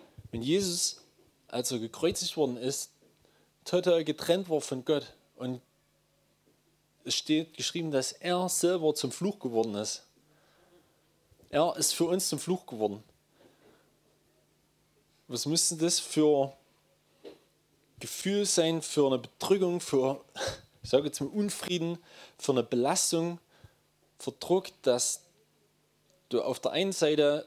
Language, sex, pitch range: German, male, 130-170 Hz